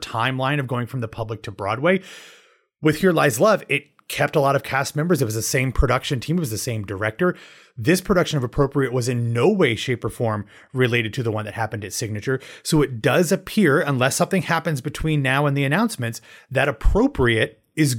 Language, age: English, 30-49